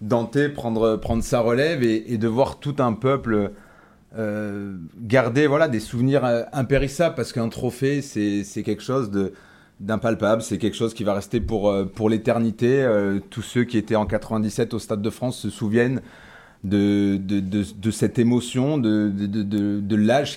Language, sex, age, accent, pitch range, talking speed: French, male, 30-49, French, 105-130 Hz, 180 wpm